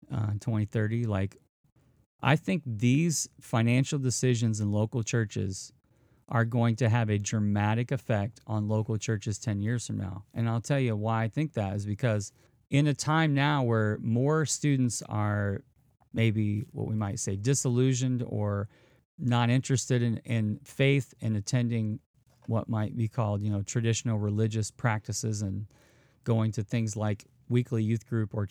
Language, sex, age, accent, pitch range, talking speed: English, male, 30-49, American, 110-130 Hz, 160 wpm